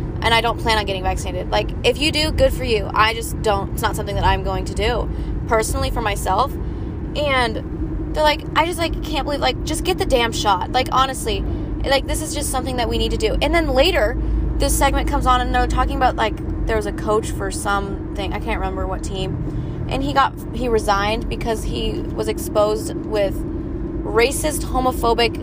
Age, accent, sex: 20-39, American, female